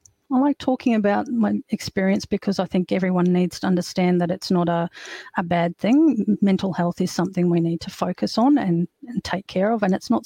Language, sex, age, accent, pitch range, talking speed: English, female, 40-59, Australian, 180-220 Hz, 215 wpm